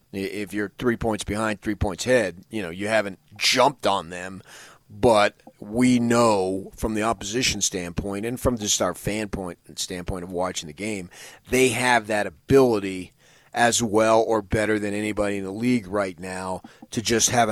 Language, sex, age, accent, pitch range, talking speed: English, male, 30-49, American, 95-110 Hz, 175 wpm